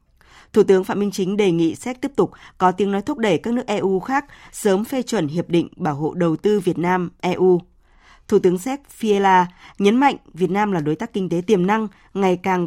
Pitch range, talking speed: 170-215 Hz, 225 wpm